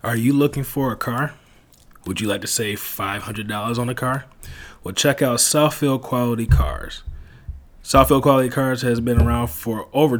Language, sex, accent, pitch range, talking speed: English, male, American, 110-130 Hz, 170 wpm